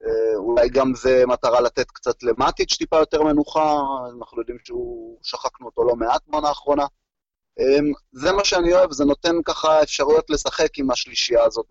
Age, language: 30-49, Hebrew